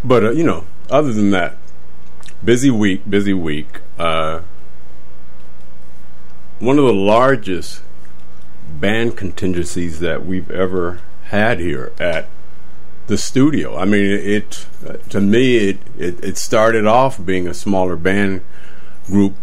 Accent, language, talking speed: American, English, 130 wpm